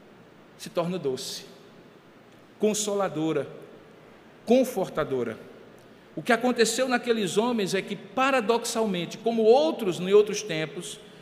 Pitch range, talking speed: 165-225 Hz, 95 wpm